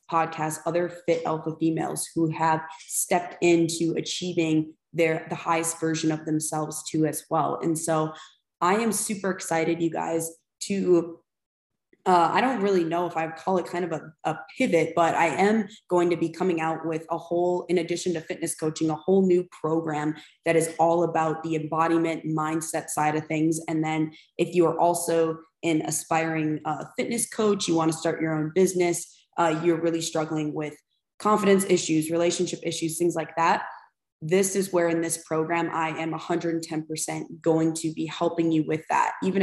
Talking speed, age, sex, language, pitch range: 180 wpm, 20-39, female, English, 160-175 Hz